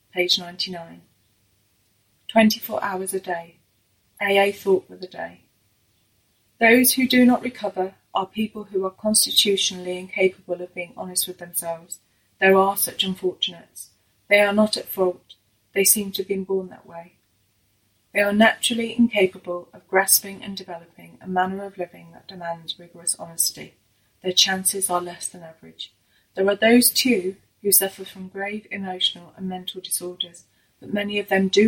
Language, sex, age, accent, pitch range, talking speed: English, female, 30-49, British, 165-200 Hz, 160 wpm